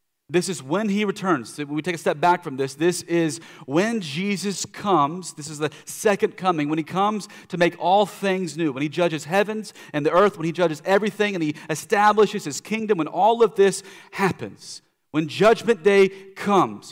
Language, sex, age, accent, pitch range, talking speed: English, male, 40-59, American, 135-190 Hz, 195 wpm